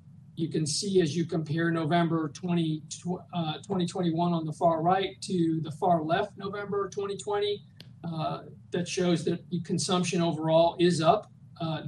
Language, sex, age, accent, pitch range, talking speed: English, male, 50-69, American, 160-185 Hz, 140 wpm